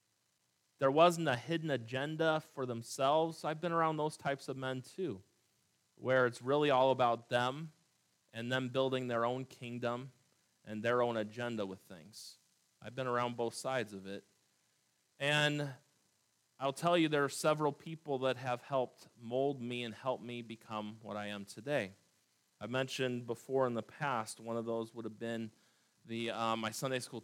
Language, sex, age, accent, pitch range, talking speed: English, male, 30-49, American, 110-145 Hz, 170 wpm